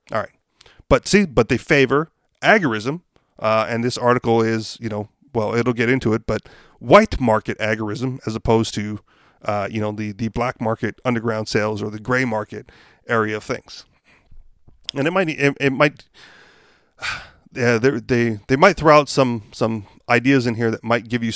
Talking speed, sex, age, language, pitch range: 185 wpm, male, 30-49, English, 115-165 Hz